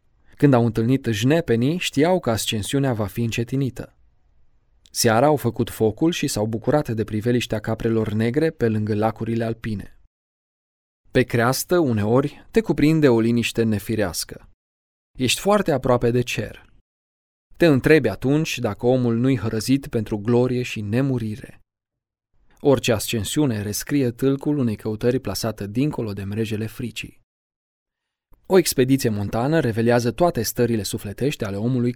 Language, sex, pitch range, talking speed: Romanian, male, 110-135 Hz, 130 wpm